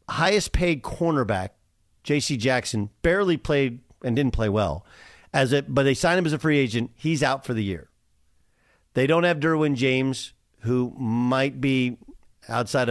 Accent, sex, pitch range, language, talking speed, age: American, male, 110-145 Hz, English, 165 wpm, 50-69